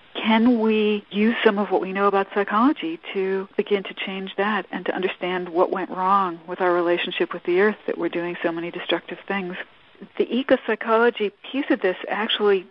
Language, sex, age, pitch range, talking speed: English, female, 50-69, 175-220 Hz, 190 wpm